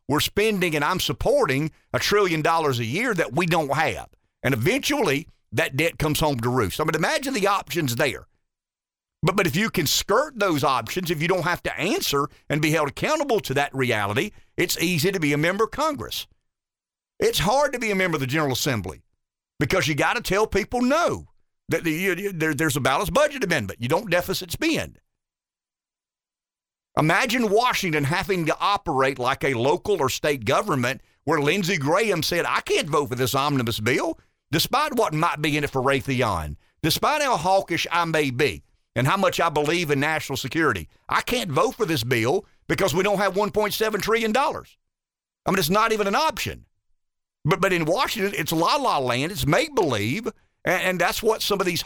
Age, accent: 50-69, American